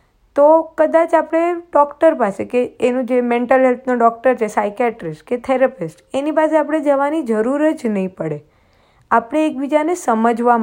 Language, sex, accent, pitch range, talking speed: Gujarati, female, native, 220-305 Hz, 155 wpm